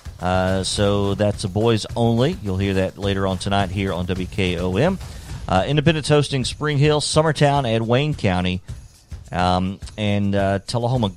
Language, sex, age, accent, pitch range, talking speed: English, male, 40-59, American, 90-125 Hz, 150 wpm